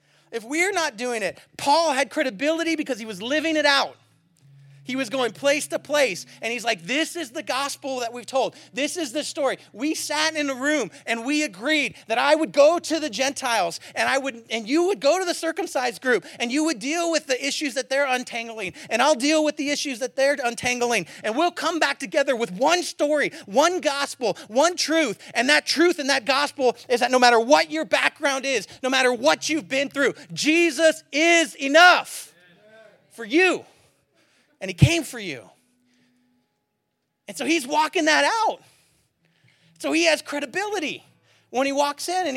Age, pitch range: 30-49, 225-310 Hz